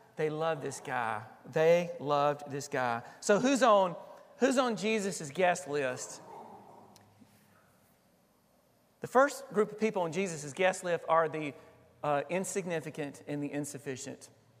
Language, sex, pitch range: English, male, 160-220 Hz